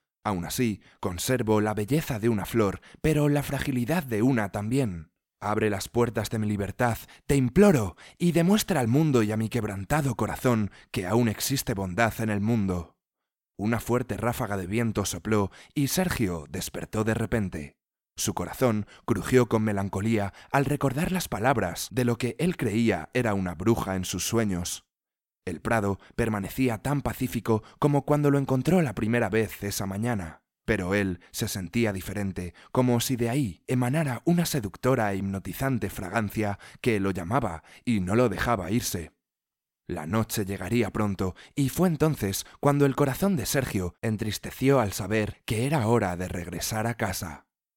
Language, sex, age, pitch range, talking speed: Spanish, male, 20-39, 100-130 Hz, 160 wpm